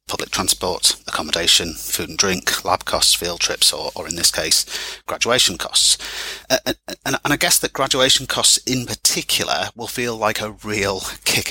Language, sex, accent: English, male, British